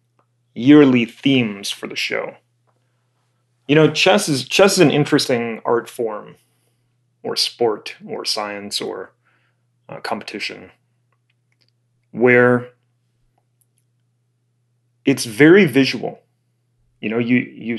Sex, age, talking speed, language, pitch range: male, 30-49, 100 wpm, English, 120-125 Hz